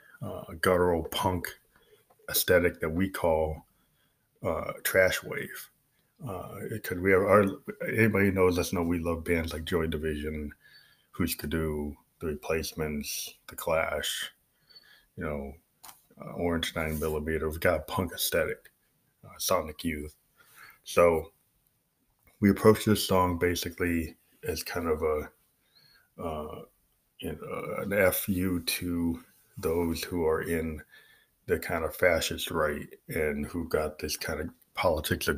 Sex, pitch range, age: male, 75-85 Hz, 20-39